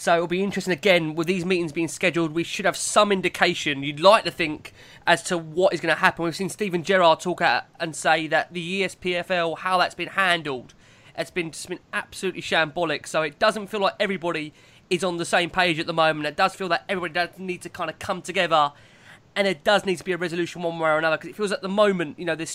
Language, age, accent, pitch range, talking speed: English, 20-39, British, 165-195 Hz, 255 wpm